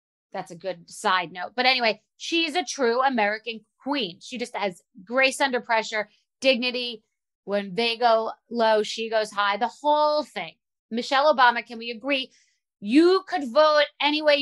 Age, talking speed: 30-49, 160 wpm